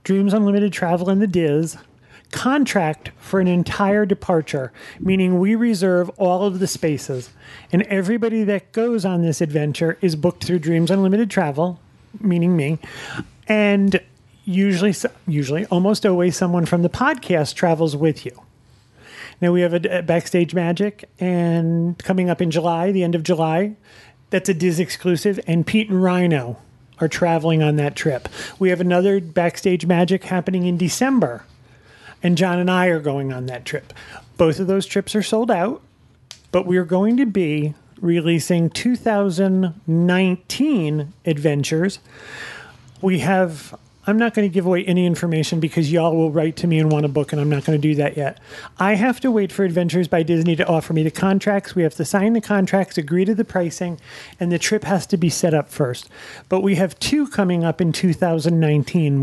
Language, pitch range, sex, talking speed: English, 155-190 Hz, male, 175 wpm